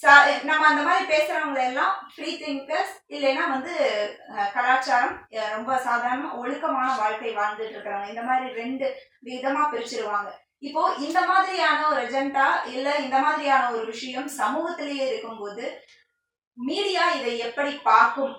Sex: female